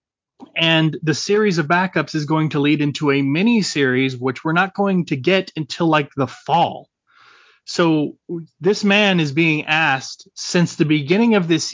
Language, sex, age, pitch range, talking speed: English, male, 30-49, 140-175 Hz, 175 wpm